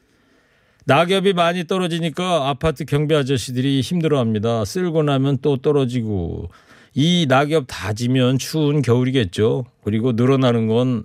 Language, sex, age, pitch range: Korean, male, 40-59, 110-150 Hz